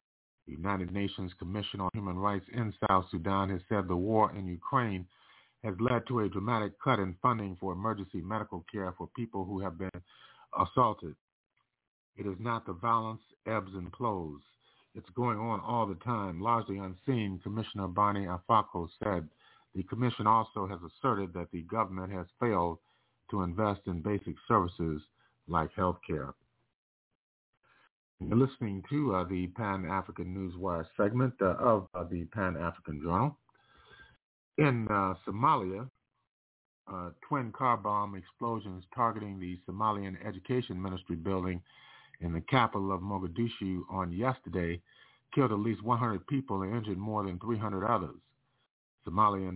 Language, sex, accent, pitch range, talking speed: English, male, American, 90-110 Hz, 145 wpm